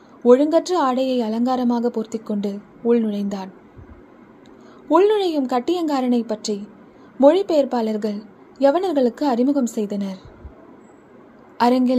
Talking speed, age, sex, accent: 80 wpm, 20-39, female, native